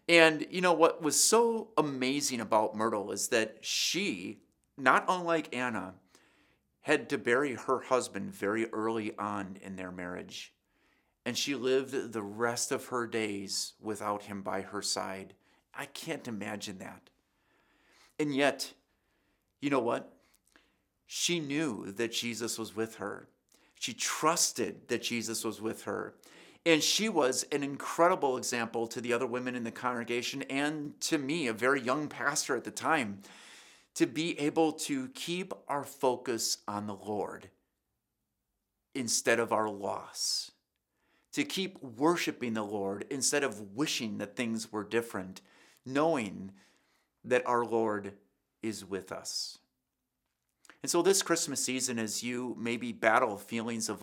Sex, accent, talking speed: male, American, 145 wpm